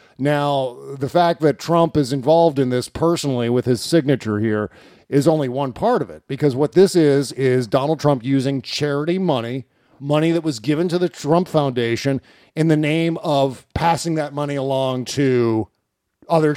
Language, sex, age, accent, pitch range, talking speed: English, male, 40-59, American, 140-175 Hz, 175 wpm